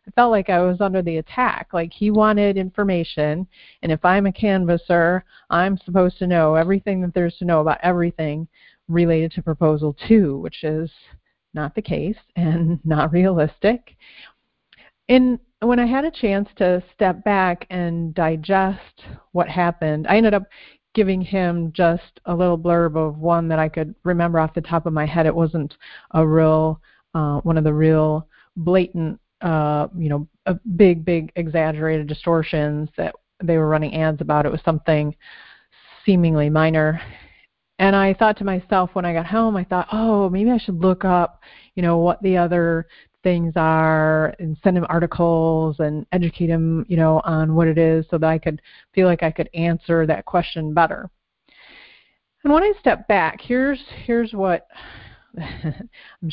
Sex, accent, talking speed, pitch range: female, American, 170 wpm, 160-190 Hz